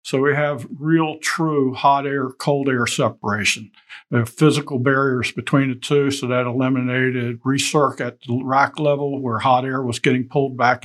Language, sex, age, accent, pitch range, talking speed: English, male, 50-69, American, 130-150 Hz, 170 wpm